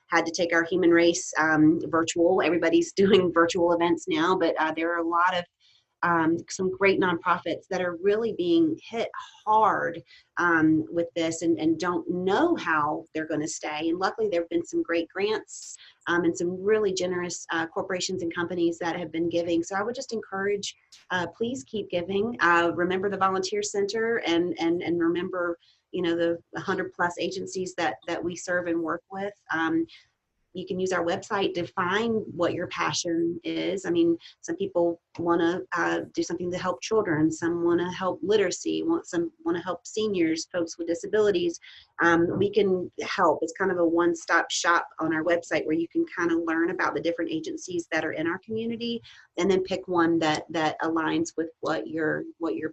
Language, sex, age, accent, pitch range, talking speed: English, female, 30-49, American, 170-195 Hz, 190 wpm